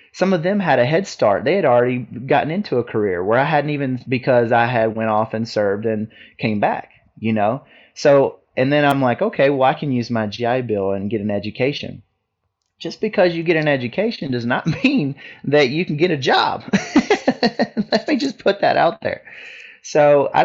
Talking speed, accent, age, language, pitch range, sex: 210 wpm, American, 30-49, English, 110-135 Hz, male